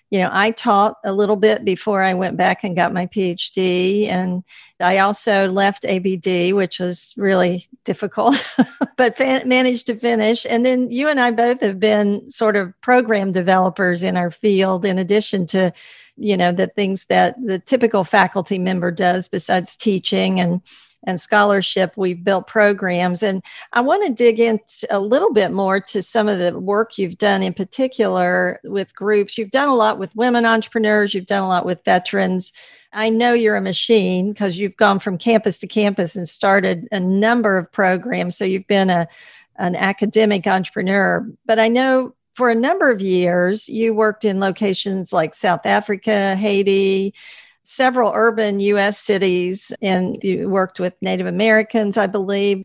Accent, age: American, 50-69